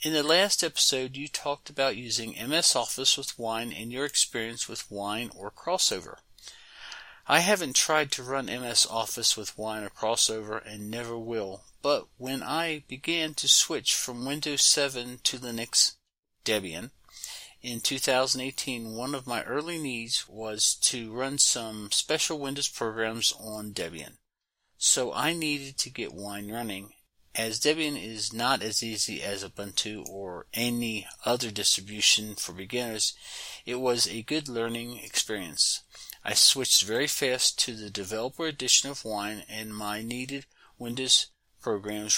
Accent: American